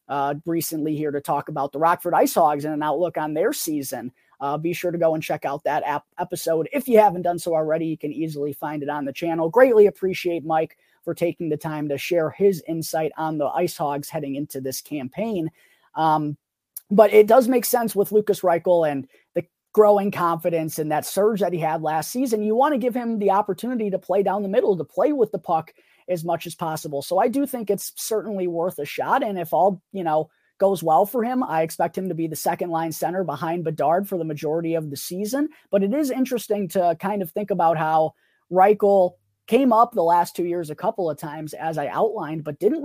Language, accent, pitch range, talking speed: English, American, 160-205 Hz, 230 wpm